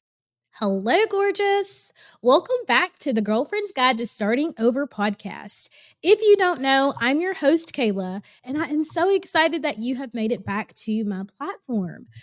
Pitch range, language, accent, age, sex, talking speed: 215-295 Hz, English, American, 20-39, female, 165 wpm